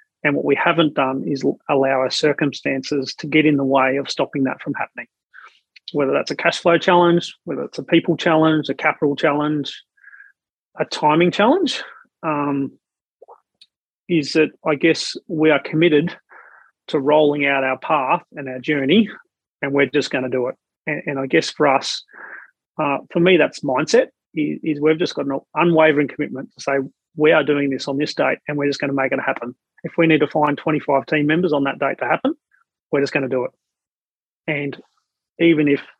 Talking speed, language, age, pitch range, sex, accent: 195 wpm, English, 30-49, 140-170 Hz, male, Australian